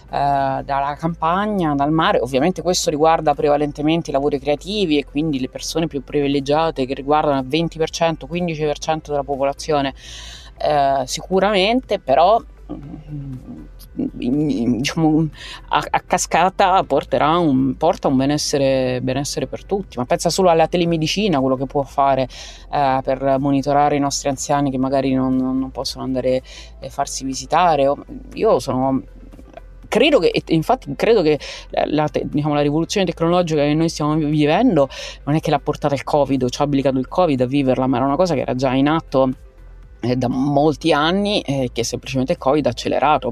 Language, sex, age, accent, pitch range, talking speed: Italian, female, 30-49, native, 130-160 Hz, 155 wpm